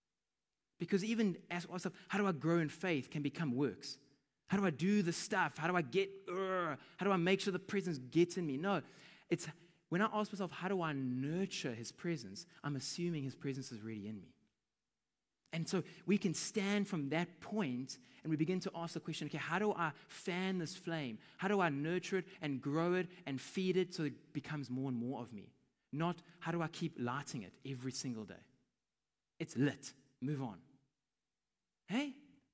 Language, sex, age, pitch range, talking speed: English, male, 20-39, 145-195 Hz, 205 wpm